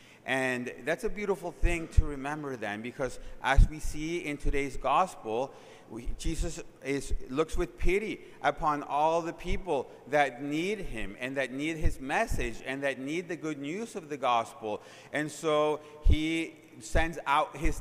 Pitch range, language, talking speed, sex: 125-155 Hz, English, 160 wpm, male